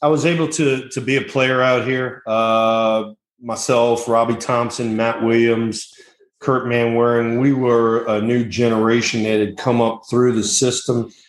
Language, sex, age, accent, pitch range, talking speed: English, male, 40-59, American, 110-125 Hz, 160 wpm